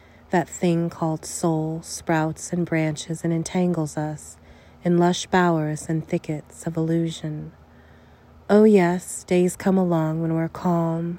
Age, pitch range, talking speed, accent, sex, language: 30-49, 150-175 Hz, 135 wpm, American, female, English